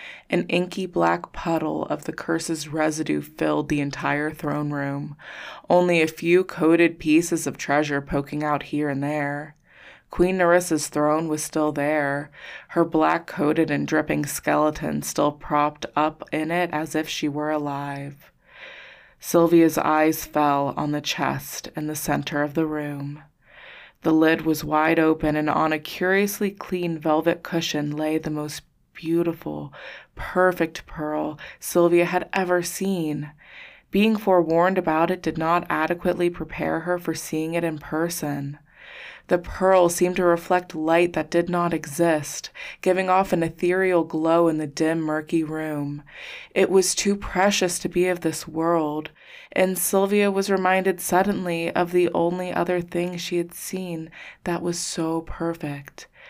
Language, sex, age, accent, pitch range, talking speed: English, female, 20-39, American, 150-175 Hz, 150 wpm